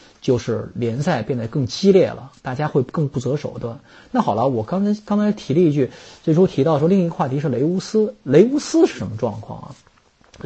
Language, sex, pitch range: Chinese, male, 125-195 Hz